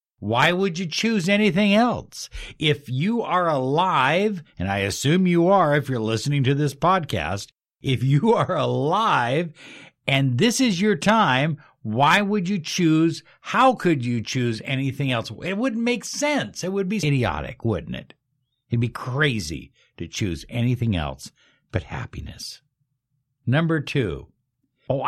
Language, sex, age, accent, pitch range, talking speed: English, male, 60-79, American, 120-170 Hz, 150 wpm